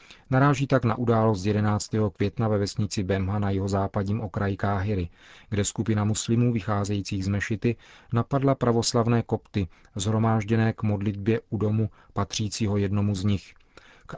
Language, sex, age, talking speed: Czech, male, 40-59, 135 wpm